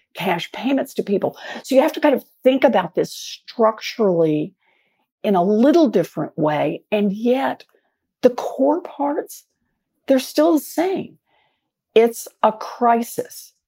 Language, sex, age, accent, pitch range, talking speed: English, female, 50-69, American, 175-240 Hz, 135 wpm